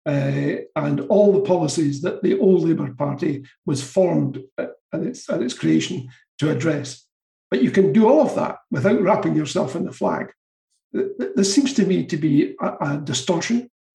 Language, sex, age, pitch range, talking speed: English, male, 60-79, 150-230 Hz, 170 wpm